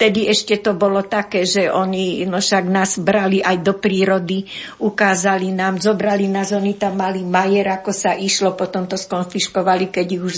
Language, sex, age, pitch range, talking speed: Slovak, female, 50-69, 185-215 Hz, 180 wpm